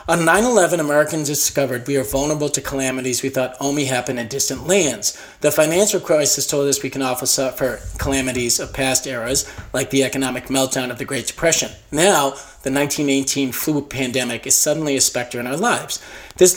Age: 40-59